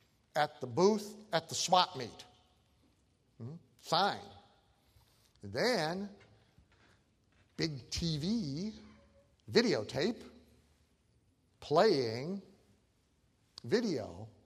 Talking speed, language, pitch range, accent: 65 wpm, English, 120-185 Hz, American